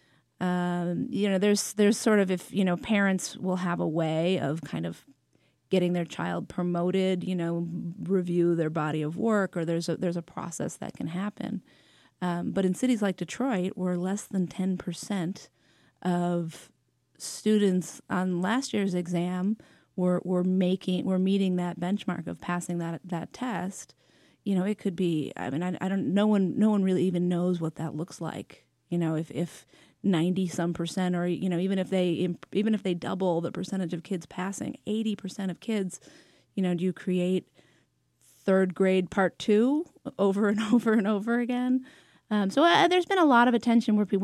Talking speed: 190 wpm